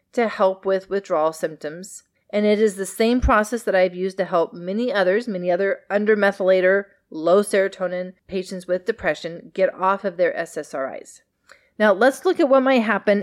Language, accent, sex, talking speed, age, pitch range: English, American, female, 170 wpm, 30-49, 185-255 Hz